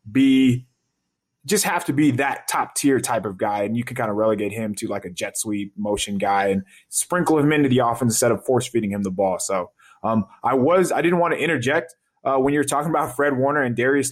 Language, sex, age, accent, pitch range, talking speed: English, male, 20-39, American, 115-155 Hz, 240 wpm